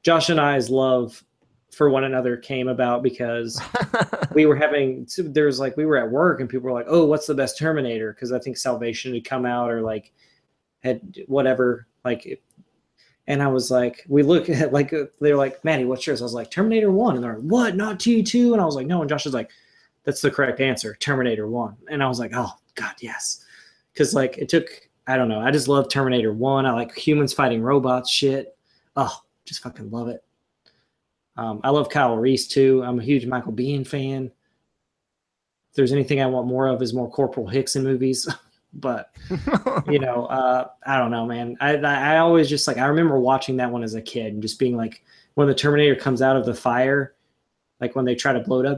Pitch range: 125-145 Hz